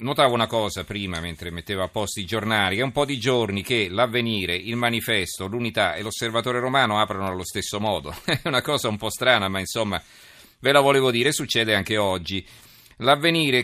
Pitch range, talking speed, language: 100-125 Hz, 190 wpm, Italian